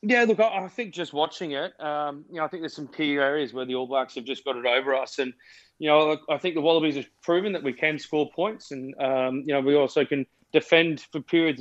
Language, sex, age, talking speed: English, male, 30-49, 260 wpm